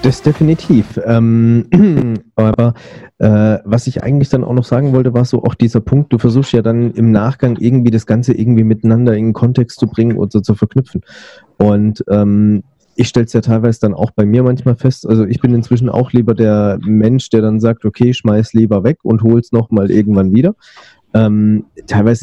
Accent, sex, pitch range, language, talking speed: German, male, 110-125 Hz, German, 200 wpm